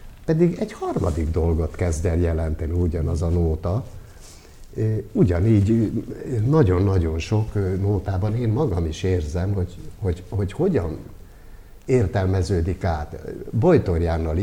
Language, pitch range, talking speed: Hungarian, 85-105 Hz, 105 wpm